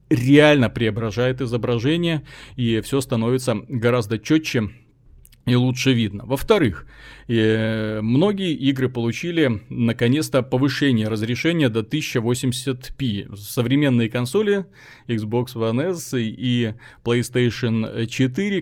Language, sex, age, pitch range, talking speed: Russian, male, 30-49, 120-150 Hz, 95 wpm